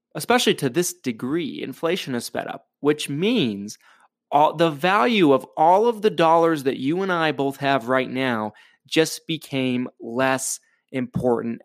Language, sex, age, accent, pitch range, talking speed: English, male, 30-49, American, 125-165 Hz, 155 wpm